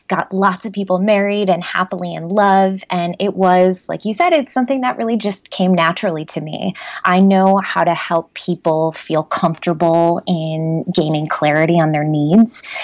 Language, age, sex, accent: English, 20-39, female, American